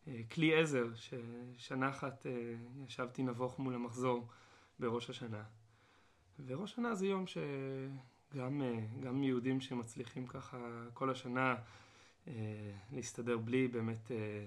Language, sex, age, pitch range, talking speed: Hebrew, male, 20-39, 115-160 Hz, 95 wpm